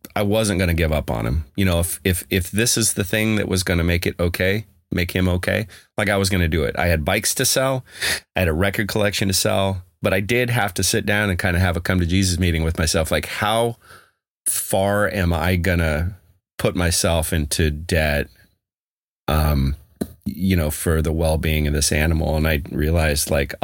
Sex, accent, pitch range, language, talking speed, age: male, American, 80-100 Hz, English, 225 wpm, 30-49